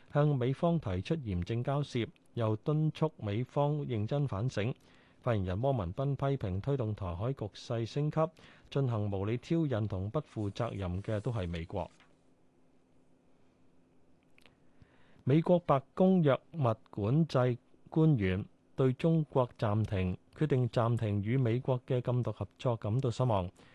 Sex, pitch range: male, 105-140 Hz